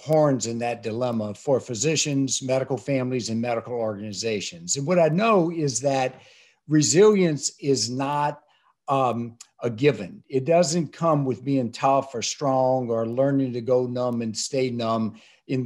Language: English